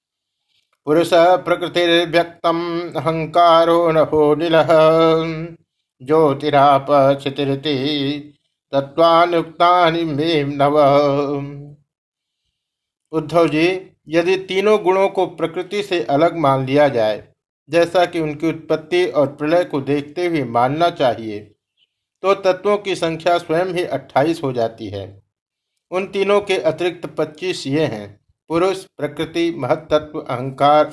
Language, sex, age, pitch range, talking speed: Hindi, male, 60-79, 145-170 Hz, 100 wpm